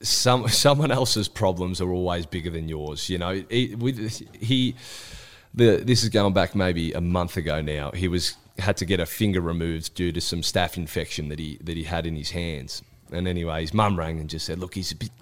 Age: 20-39